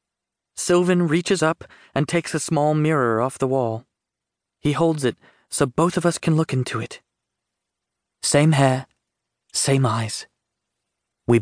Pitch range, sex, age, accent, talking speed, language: 120-165 Hz, male, 30-49, British, 140 wpm, English